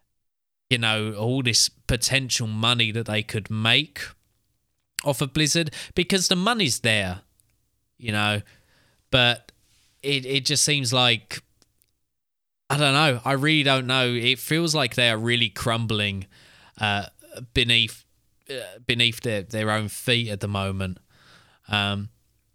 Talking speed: 135 wpm